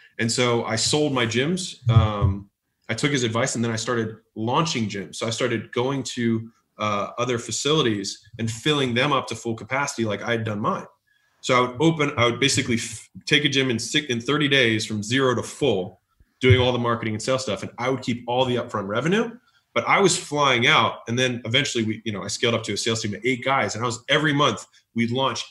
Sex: male